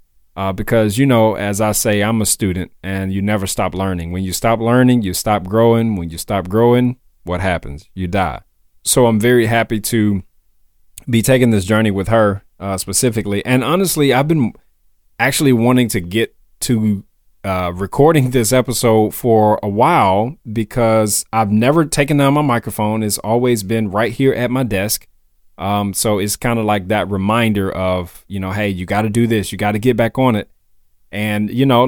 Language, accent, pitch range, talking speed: English, American, 100-120 Hz, 190 wpm